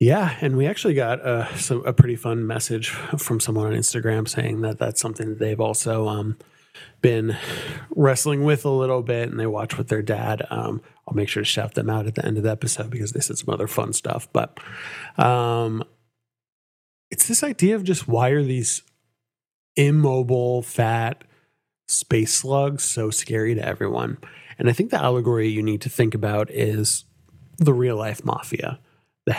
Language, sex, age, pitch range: English, male, 30-49, 110-135 Hz